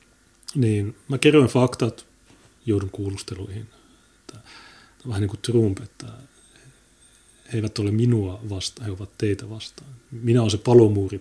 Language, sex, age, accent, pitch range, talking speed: Finnish, male, 30-49, native, 100-120 Hz, 125 wpm